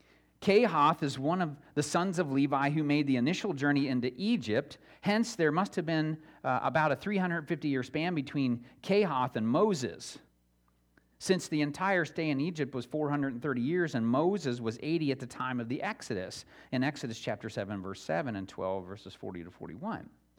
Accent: American